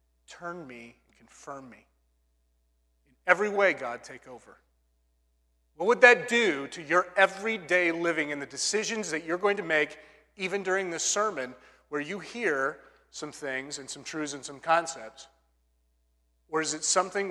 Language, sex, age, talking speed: English, male, 40-59, 160 wpm